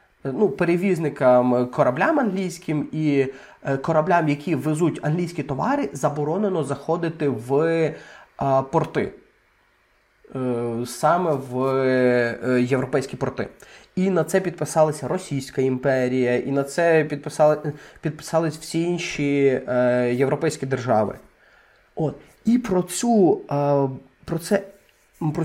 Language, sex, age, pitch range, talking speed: Ukrainian, male, 20-39, 140-185 Hz, 95 wpm